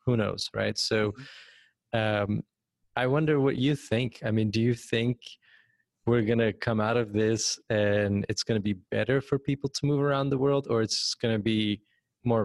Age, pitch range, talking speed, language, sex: 20-39, 105-115 Hz, 200 wpm, English, male